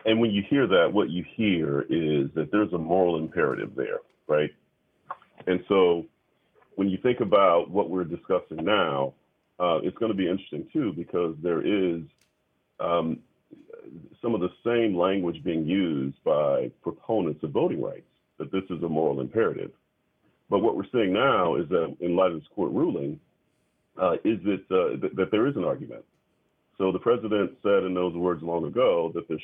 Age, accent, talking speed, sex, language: 40-59, American, 185 wpm, male, English